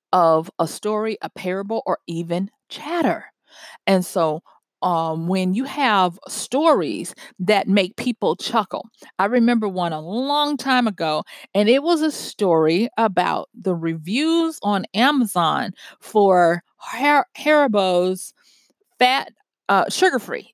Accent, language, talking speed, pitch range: American, English, 125 wpm, 185-265 Hz